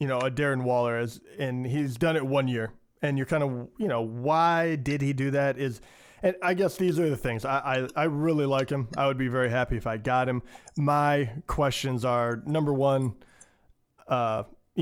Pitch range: 120-145 Hz